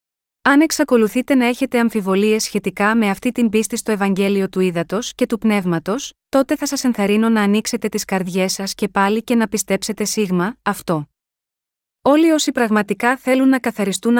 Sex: female